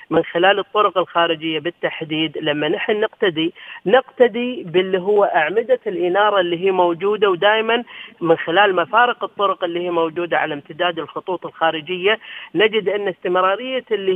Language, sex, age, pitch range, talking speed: Arabic, female, 40-59, 175-230 Hz, 135 wpm